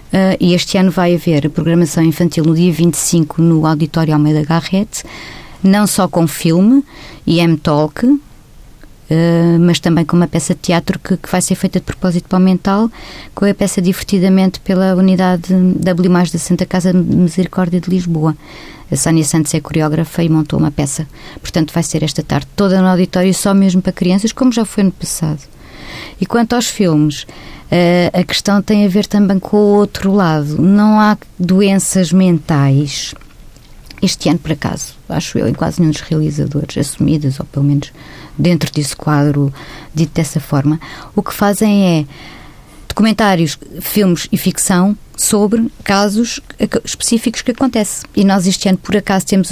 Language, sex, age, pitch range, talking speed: Portuguese, female, 20-39, 160-195 Hz, 165 wpm